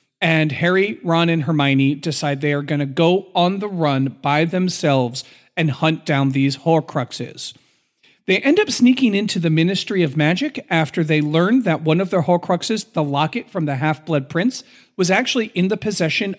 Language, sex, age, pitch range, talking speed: English, male, 40-59, 150-195 Hz, 180 wpm